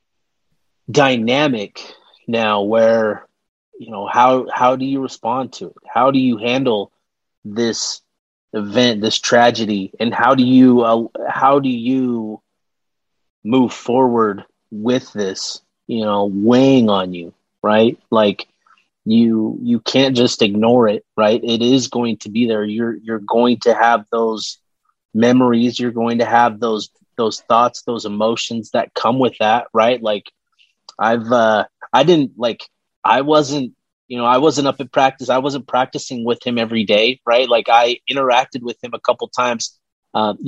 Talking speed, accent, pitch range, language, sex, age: 155 wpm, American, 115-130 Hz, English, male, 30-49